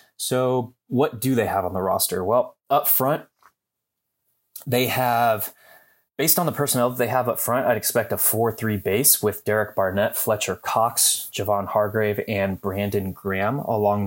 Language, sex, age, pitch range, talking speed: English, male, 20-39, 100-125 Hz, 160 wpm